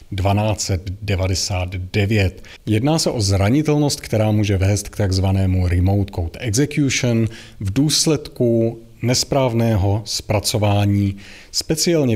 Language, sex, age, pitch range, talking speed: Czech, male, 30-49, 100-120 Hz, 90 wpm